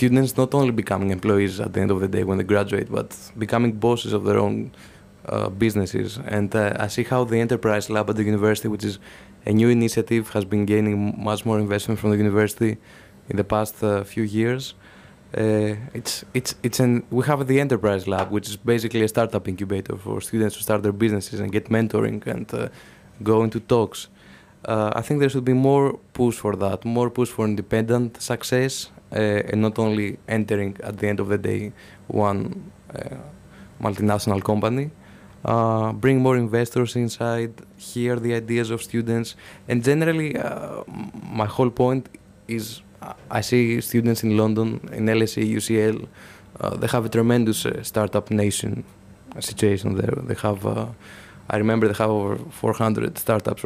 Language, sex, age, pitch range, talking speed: English, male, 20-39, 105-120 Hz, 175 wpm